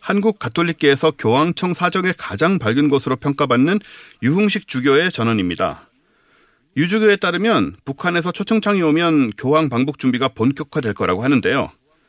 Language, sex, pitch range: Korean, male, 130-175 Hz